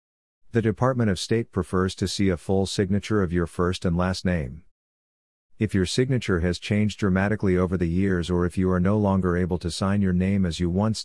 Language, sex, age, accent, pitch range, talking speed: English, male, 50-69, American, 85-100 Hz, 210 wpm